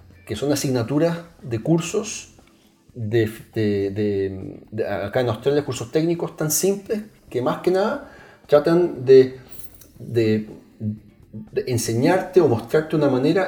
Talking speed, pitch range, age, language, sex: 130 wpm, 110-135 Hz, 40-59, Spanish, male